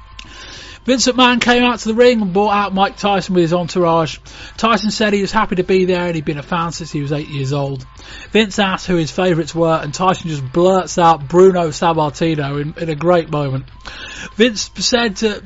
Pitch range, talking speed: 155-205 Hz, 215 wpm